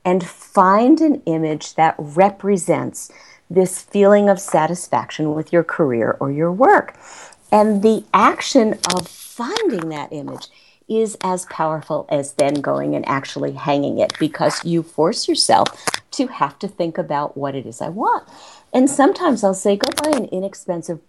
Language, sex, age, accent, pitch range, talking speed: English, female, 50-69, American, 160-205 Hz, 155 wpm